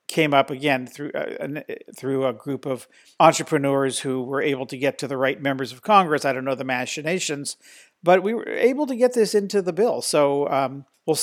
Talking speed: 210 wpm